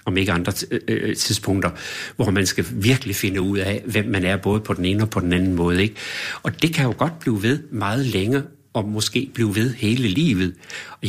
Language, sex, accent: Danish, male, native